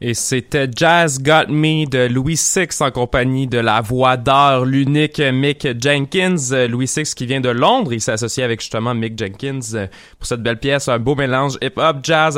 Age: 20-39